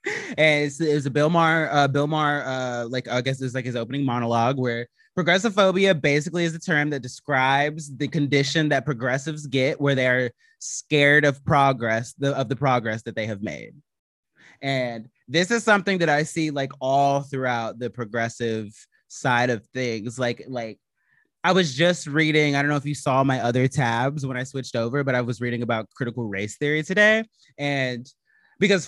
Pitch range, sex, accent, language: 130-165 Hz, male, American, English